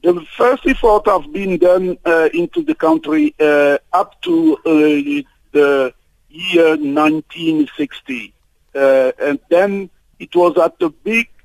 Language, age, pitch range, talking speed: English, 50-69, 145-215 Hz, 130 wpm